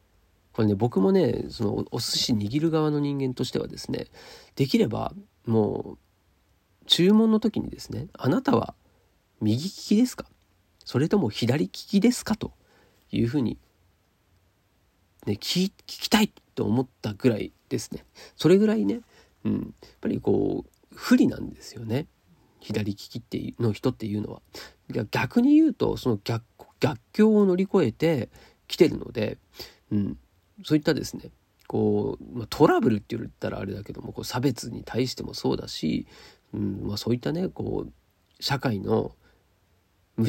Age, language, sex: 40-59, Japanese, male